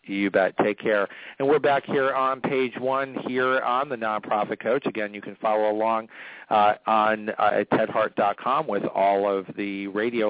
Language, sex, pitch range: English, male, 100-115 Hz